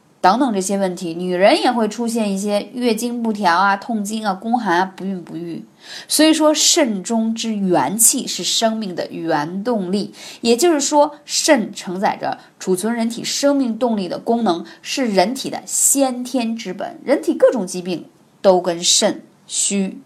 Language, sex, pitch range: Chinese, female, 190-270 Hz